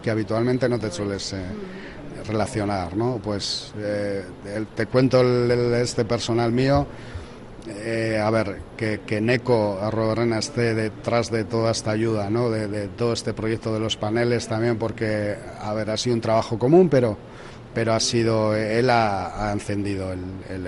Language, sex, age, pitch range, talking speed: Spanish, male, 40-59, 110-125 Hz, 160 wpm